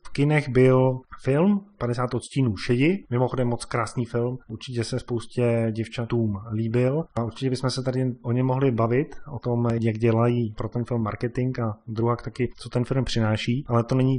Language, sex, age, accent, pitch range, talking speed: Czech, male, 30-49, native, 115-135 Hz, 185 wpm